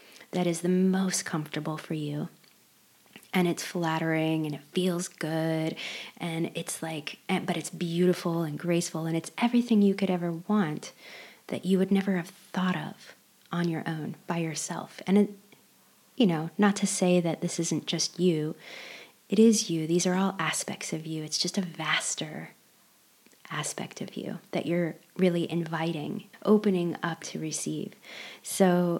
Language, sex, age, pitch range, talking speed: English, female, 30-49, 165-195 Hz, 165 wpm